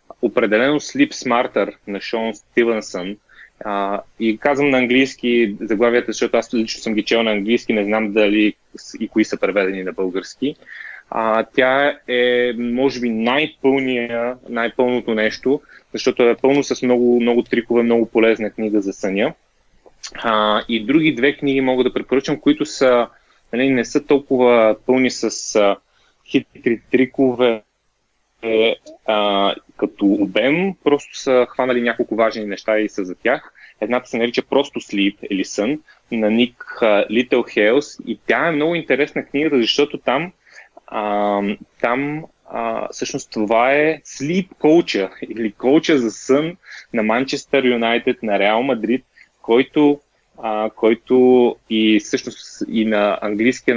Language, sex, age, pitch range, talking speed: Bulgarian, male, 30-49, 110-135 Hz, 135 wpm